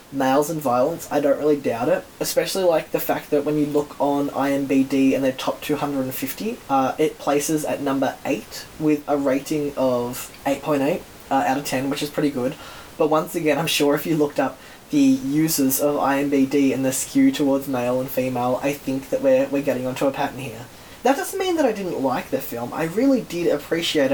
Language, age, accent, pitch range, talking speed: English, 10-29, Australian, 140-160 Hz, 205 wpm